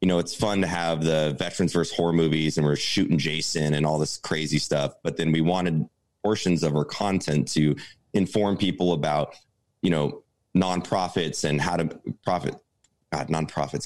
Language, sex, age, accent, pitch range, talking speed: English, male, 30-49, American, 75-90 Hz, 180 wpm